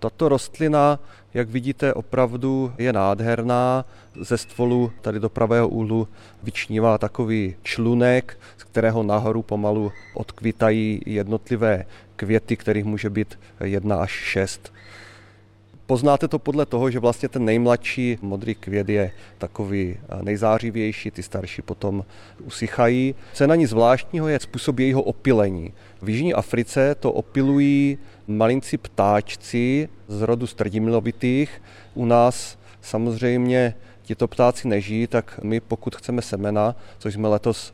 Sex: male